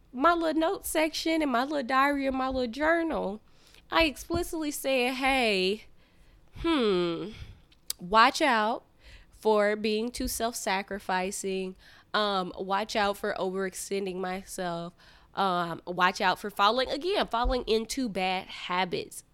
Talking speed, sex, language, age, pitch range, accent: 120 wpm, female, English, 20-39, 185-260 Hz, American